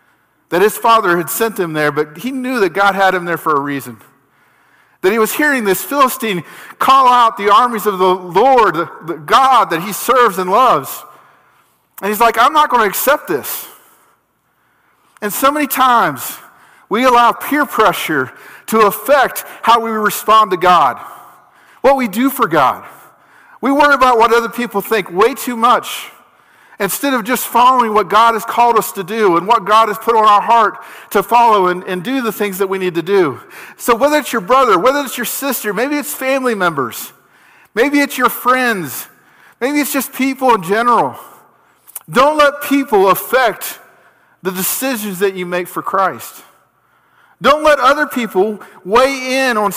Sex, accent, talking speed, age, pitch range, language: male, American, 180 wpm, 40-59, 200-260 Hz, English